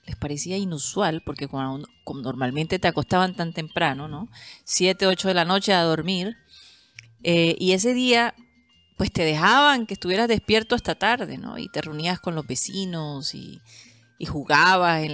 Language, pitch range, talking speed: Spanish, 135-180 Hz, 160 wpm